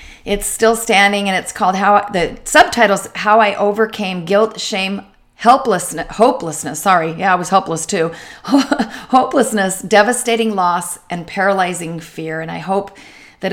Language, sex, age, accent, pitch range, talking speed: English, female, 40-59, American, 175-220 Hz, 140 wpm